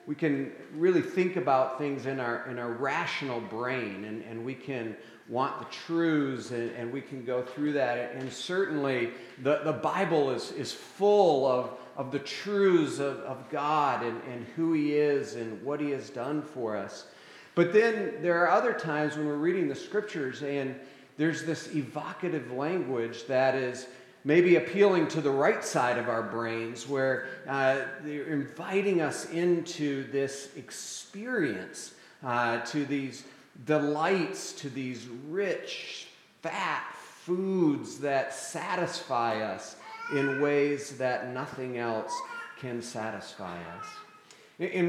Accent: American